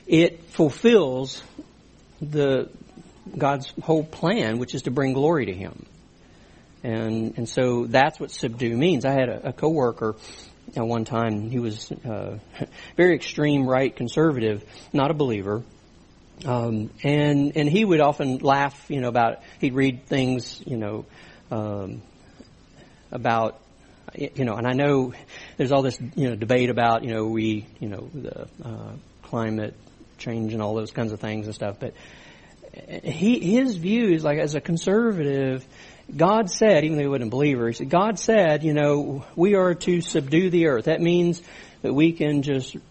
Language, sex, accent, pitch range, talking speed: English, male, American, 120-165 Hz, 170 wpm